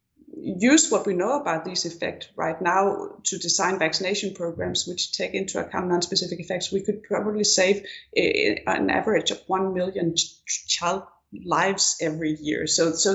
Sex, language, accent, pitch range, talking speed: female, English, Danish, 170-225 Hz, 155 wpm